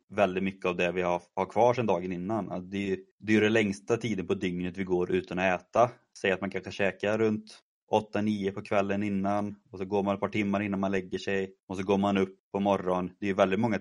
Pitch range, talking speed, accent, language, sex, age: 90-105 Hz, 250 wpm, native, Swedish, male, 30-49